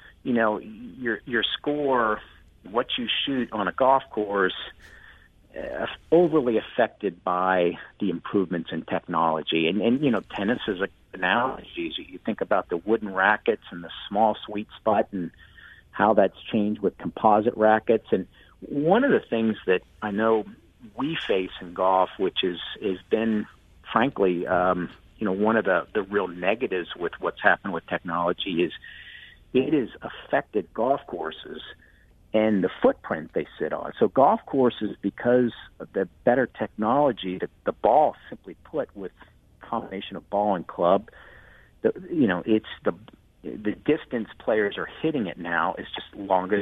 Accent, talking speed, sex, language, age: American, 160 wpm, male, English, 50-69